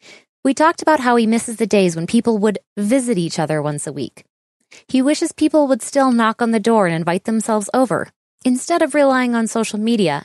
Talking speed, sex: 210 wpm, female